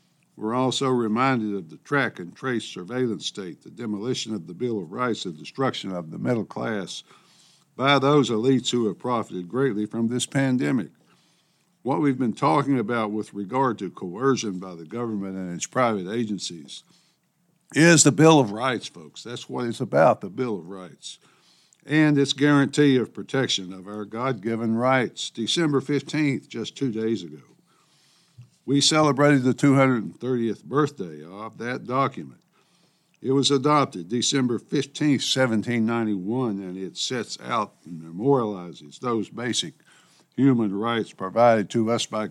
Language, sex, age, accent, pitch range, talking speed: English, male, 60-79, American, 105-140 Hz, 150 wpm